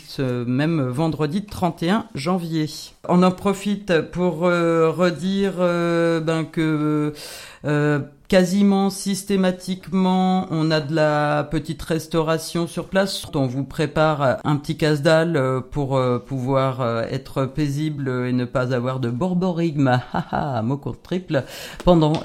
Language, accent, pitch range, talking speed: French, French, 150-185 Hz, 120 wpm